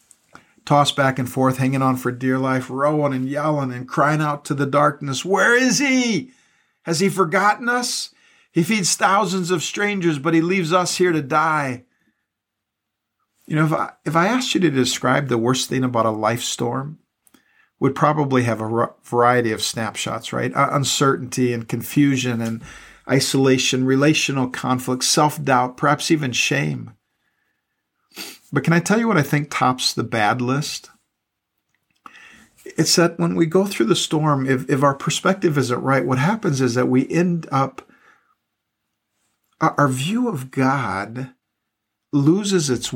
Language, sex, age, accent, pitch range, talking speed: English, male, 50-69, American, 125-160 Hz, 155 wpm